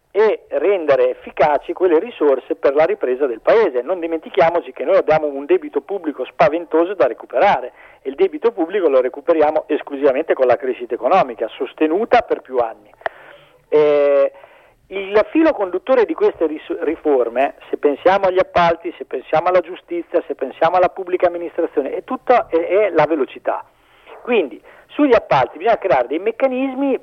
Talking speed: 150 wpm